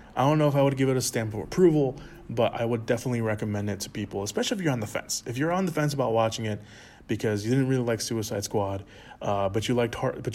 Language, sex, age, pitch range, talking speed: English, male, 20-39, 105-130 Hz, 275 wpm